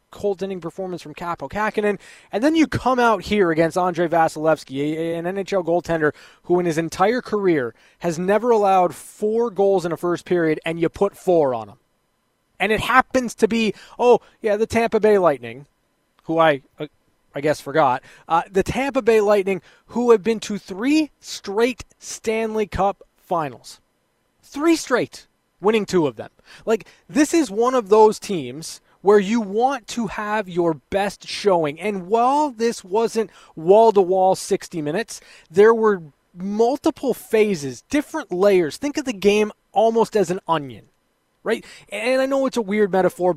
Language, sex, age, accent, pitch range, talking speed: English, male, 20-39, American, 170-225 Hz, 165 wpm